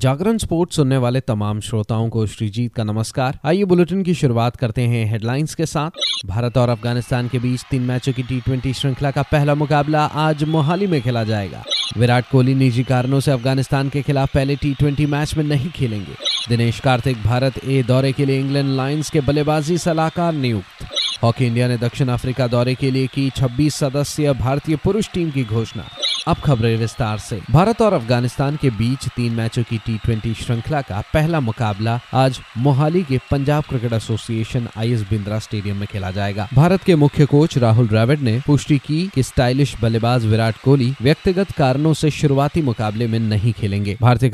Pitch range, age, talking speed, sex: 115-145 Hz, 30-49, 180 wpm, male